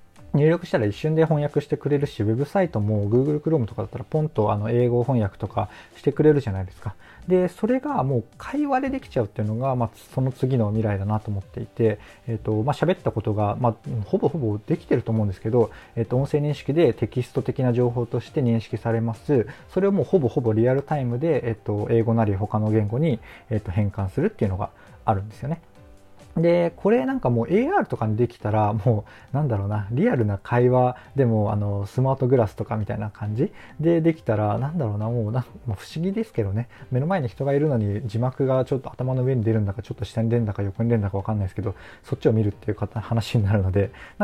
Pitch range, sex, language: 105-140 Hz, male, Japanese